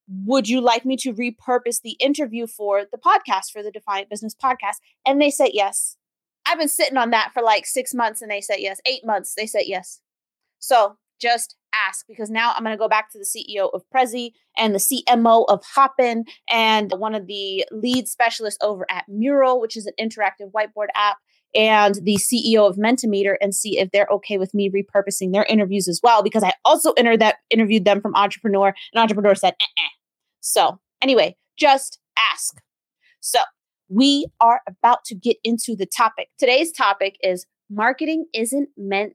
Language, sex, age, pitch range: English, female, 30-49, 195-250 Hz